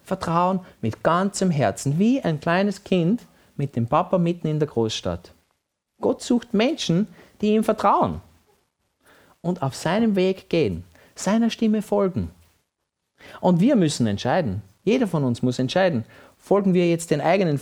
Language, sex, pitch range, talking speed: German, male, 120-195 Hz, 145 wpm